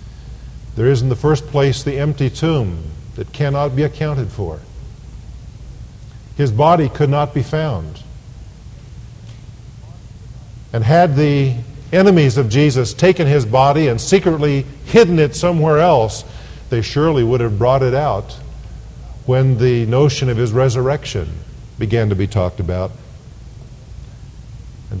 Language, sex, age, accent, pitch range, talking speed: English, male, 50-69, American, 115-155 Hz, 130 wpm